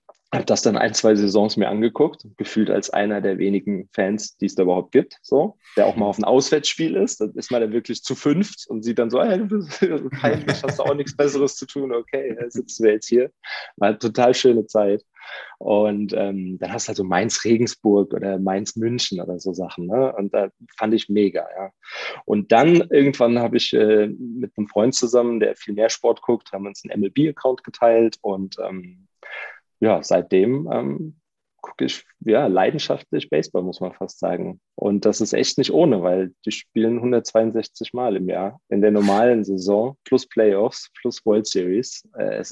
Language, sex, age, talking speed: German, male, 30-49, 195 wpm